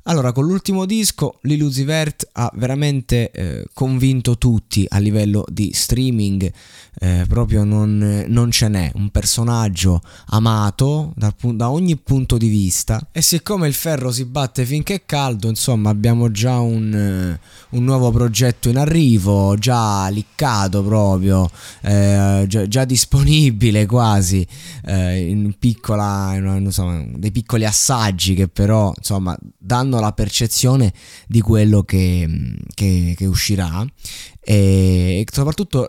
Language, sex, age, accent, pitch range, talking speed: Italian, male, 20-39, native, 100-130 Hz, 130 wpm